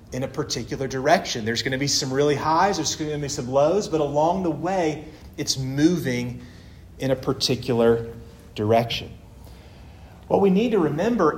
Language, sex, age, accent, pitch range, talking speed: English, male, 40-59, American, 115-160 Hz, 170 wpm